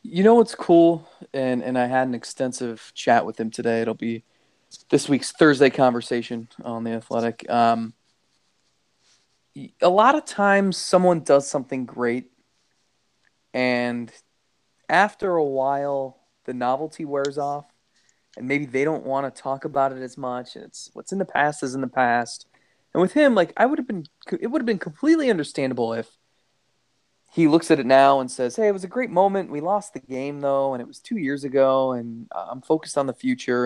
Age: 20-39